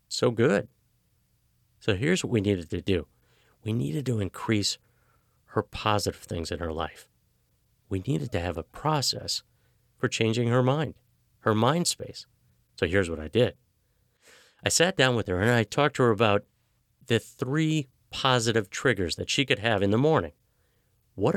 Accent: American